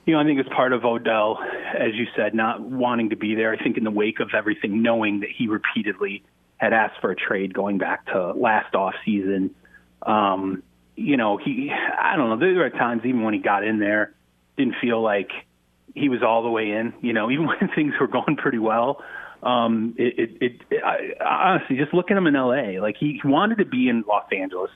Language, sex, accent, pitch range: English, male, American, 105-125 Hz